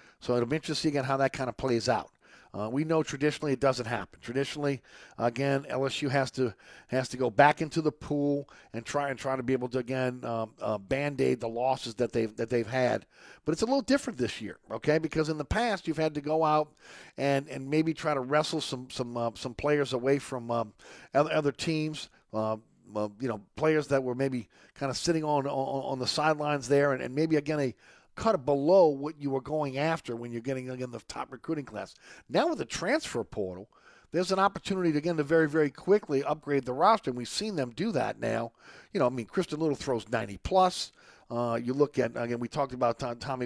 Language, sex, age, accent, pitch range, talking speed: English, male, 50-69, American, 125-155 Hz, 225 wpm